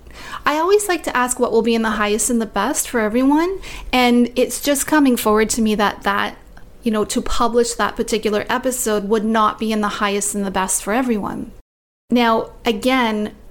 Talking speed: 200 wpm